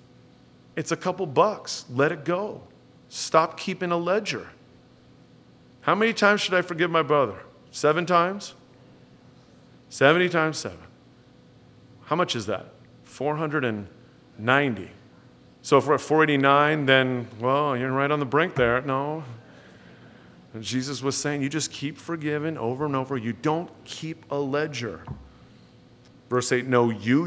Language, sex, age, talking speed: English, male, 40-59, 140 wpm